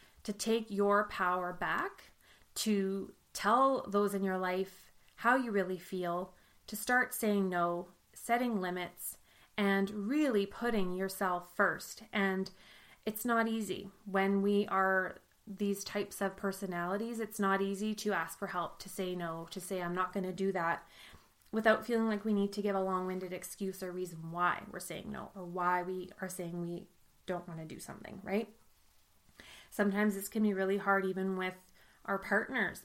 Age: 20-39